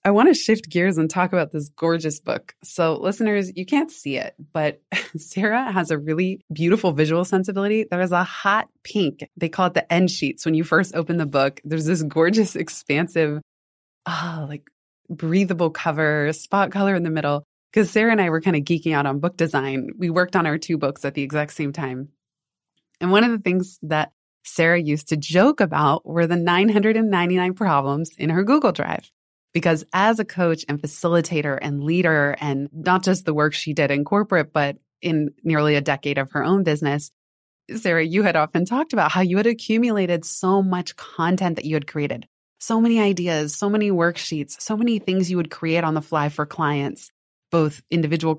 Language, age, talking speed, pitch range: English, 20-39, 195 wpm, 150-195 Hz